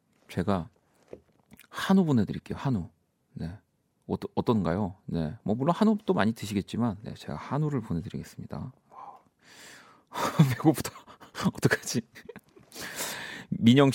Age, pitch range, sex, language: 40-59, 90-145 Hz, male, Korean